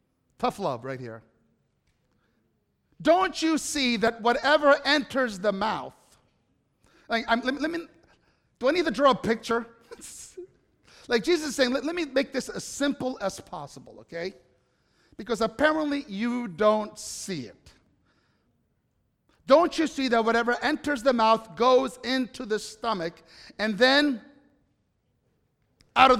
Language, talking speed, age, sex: English, 125 wpm, 50-69, male